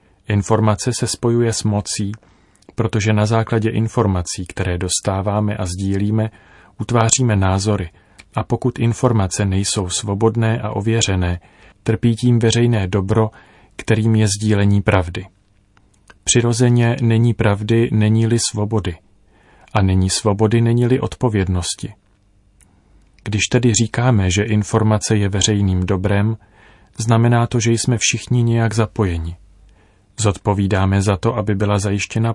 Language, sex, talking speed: Czech, male, 115 wpm